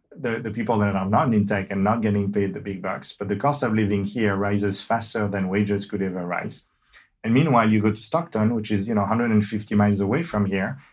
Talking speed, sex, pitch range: 235 wpm, male, 100-115 Hz